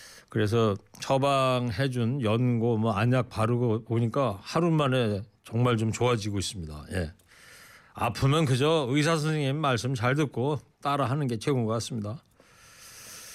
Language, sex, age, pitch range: Korean, male, 40-59, 125-160 Hz